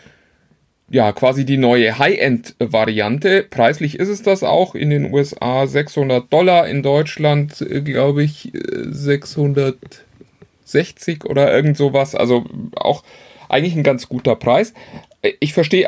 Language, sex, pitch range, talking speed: German, male, 140-190 Hz, 120 wpm